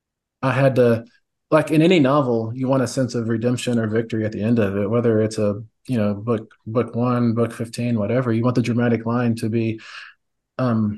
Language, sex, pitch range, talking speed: English, male, 115-135 Hz, 215 wpm